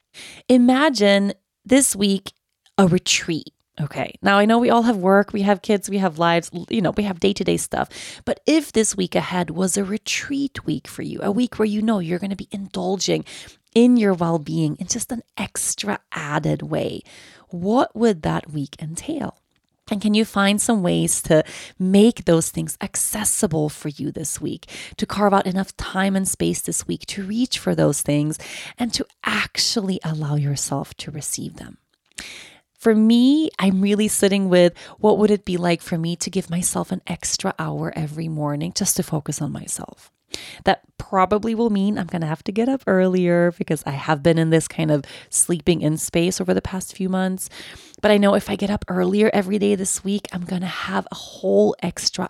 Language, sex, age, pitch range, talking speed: English, female, 30-49, 165-215 Hz, 195 wpm